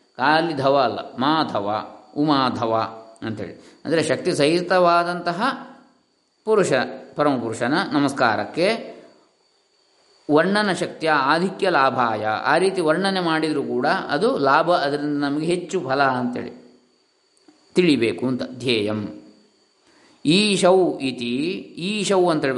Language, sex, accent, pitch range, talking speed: Kannada, male, native, 130-185 Hz, 95 wpm